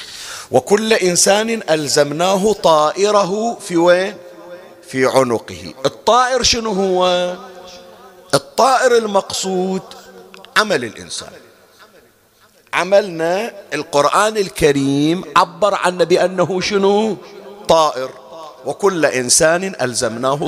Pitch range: 140-200 Hz